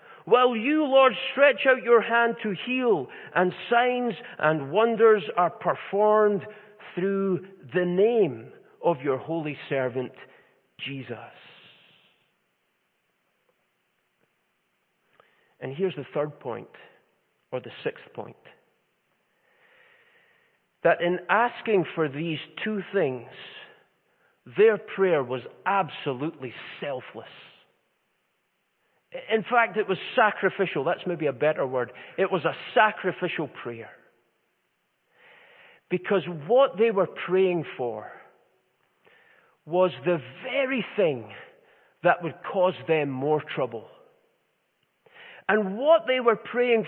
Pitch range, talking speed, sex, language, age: 175-270 Hz, 100 wpm, male, English, 40-59